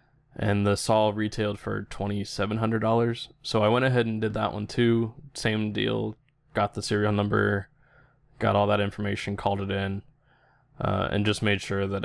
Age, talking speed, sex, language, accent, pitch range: 20-39, 170 wpm, male, English, American, 105-130 Hz